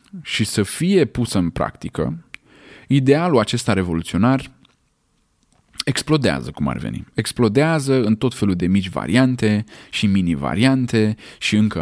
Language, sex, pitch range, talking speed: Romanian, male, 90-130 Hz, 120 wpm